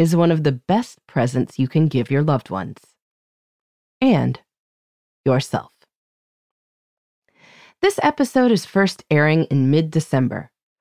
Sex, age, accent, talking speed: female, 30-49, American, 115 wpm